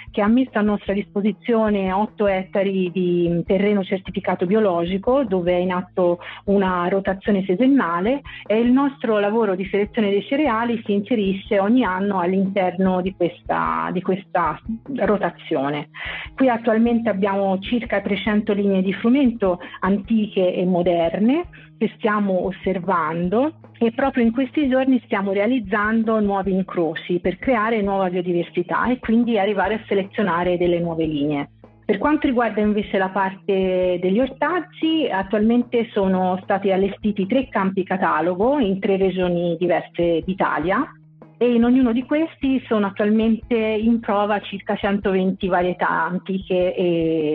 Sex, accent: female, native